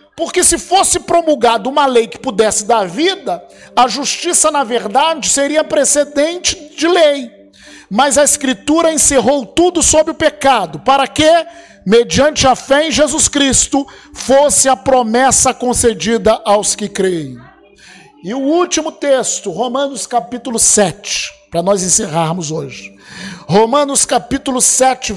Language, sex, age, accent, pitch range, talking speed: Portuguese, male, 50-69, Brazilian, 205-300 Hz, 130 wpm